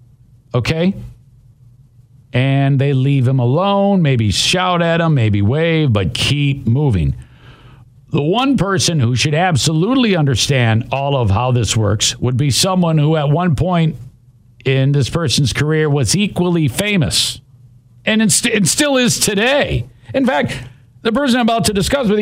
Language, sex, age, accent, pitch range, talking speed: English, male, 50-69, American, 125-205 Hz, 150 wpm